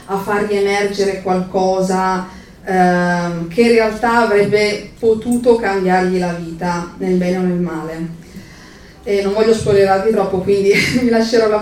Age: 30-49